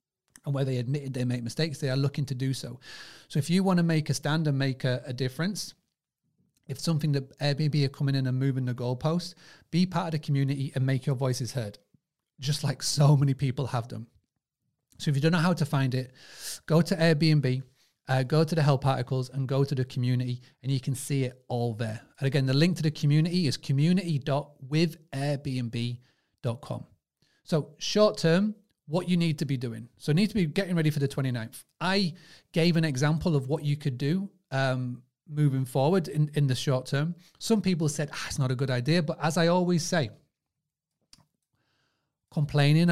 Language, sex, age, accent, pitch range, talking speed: English, male, 30-49, British, 130-160 Hz, 200 wpm